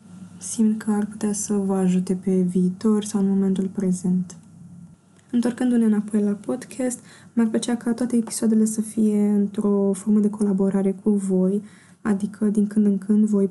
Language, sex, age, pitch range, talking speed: Romanian, female, 20-39, 195-220 Hz, 160 wpm